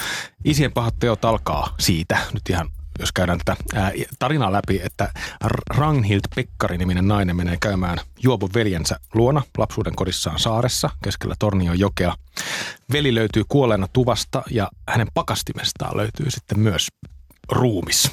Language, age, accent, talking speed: Finnish, 30-49, native, 130 wpm